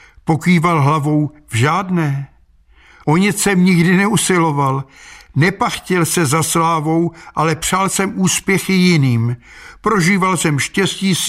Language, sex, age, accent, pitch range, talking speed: Czech, male, 60-79, native, 145-185 Hz, 115 wpm